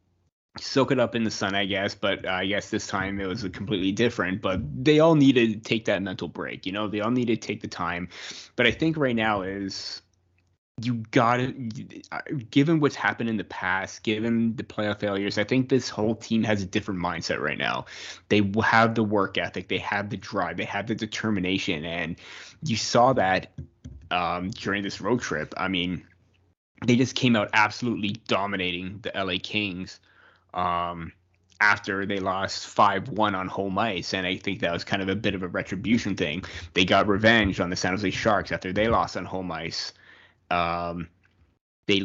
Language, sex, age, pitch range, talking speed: English, male, 20-39, 95-110 Hz, 195 wpm